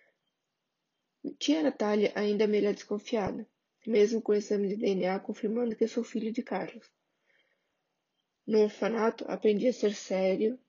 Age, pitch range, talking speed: 10-29, 205-240 Hz, 135 wpm